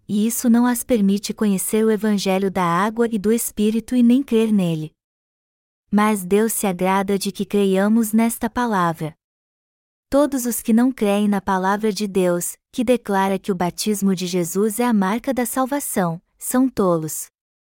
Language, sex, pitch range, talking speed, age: Portuguese, female, 195-235 Hz, 165 wpm, 20-39